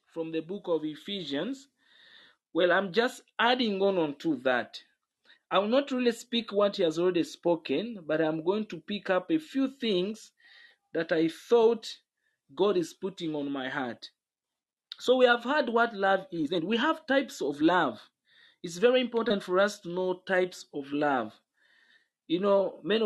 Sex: male